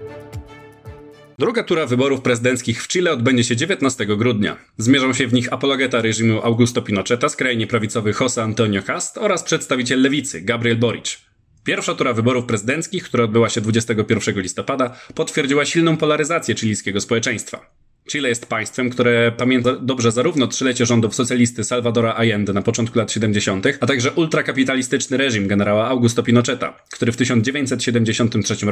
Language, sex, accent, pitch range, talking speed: Polish, male, native, 115-135 Hz, 140 wpm